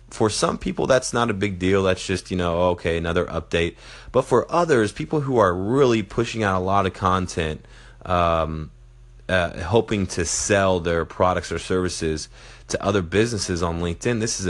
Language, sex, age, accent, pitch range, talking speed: English, male, 30-49, American, 85-105 Hz, 180 wpm